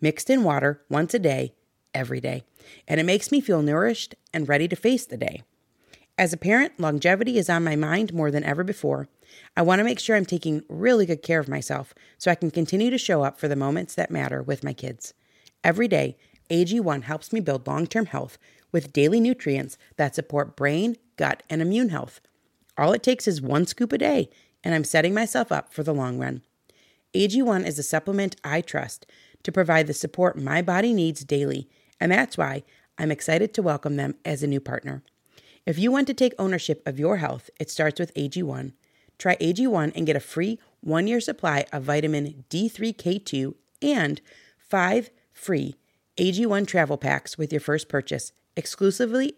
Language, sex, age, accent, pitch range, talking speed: English, female, 30-49, American, 145-205 Hz, 190 wpm